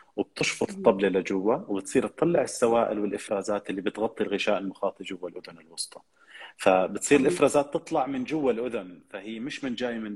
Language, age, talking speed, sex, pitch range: Arabic, 30-49, 150 wpm, male, 100-125 Hz